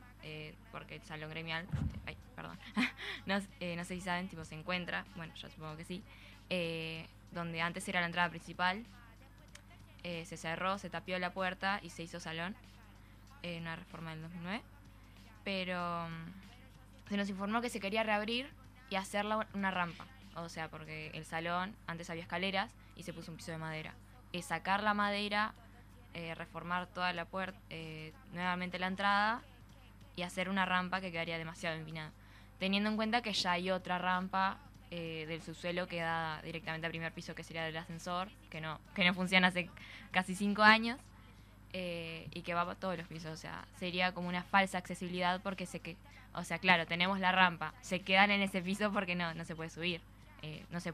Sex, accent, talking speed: female, Argentinian, 190 wpm